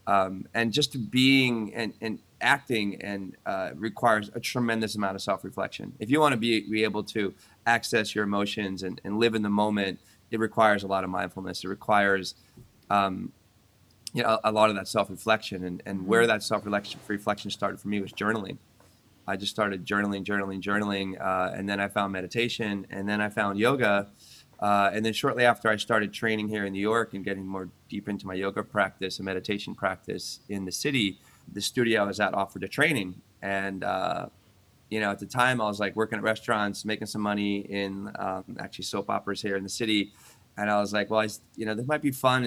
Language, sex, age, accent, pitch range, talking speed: English, male, 30-49, American, 100-110 Hz, 200 wpm